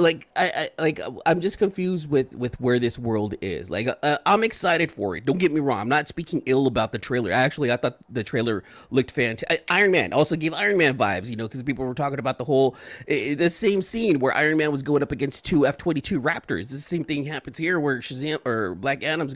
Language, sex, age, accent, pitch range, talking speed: English, male, 30-49, American, 120-155 Hz, 240 wpm